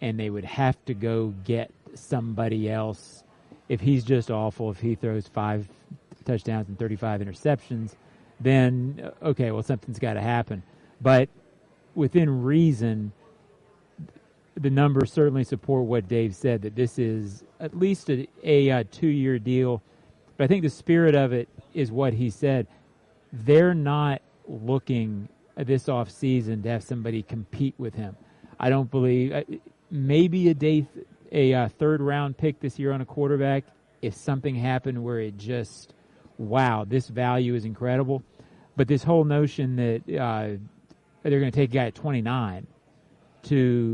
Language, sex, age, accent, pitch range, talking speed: English, male, 40-59, American, 115-140 Hz, 155 wpm